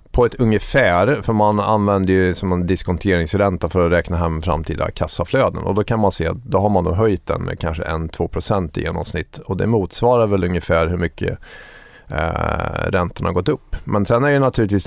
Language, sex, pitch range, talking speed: Swedish, male, 90-110 Hz, 200 wpm